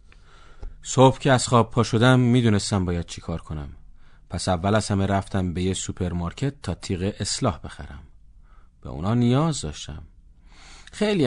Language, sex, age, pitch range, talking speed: Persian, male, 40-59, 85-135 Hz, 155 wpm